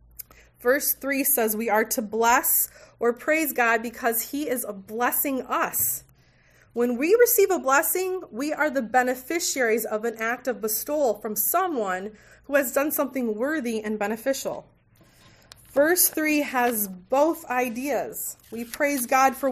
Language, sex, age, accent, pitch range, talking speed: English, female, 30-49, American, 205-275 Hz, 150 wpm